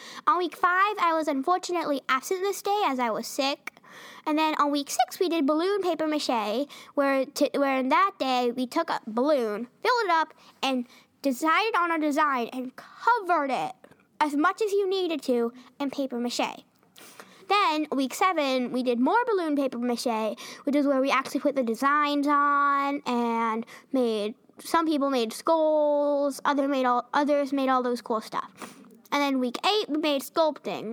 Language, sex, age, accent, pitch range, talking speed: English, female, 10-29, American, 245-315 Hz, 180 wpm